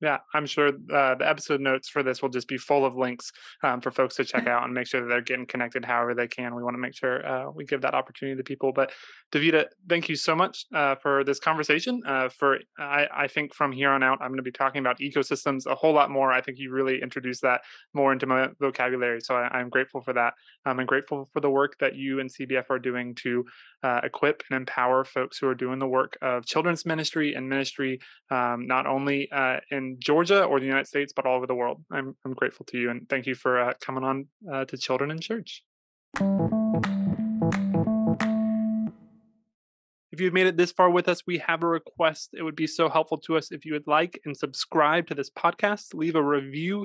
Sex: male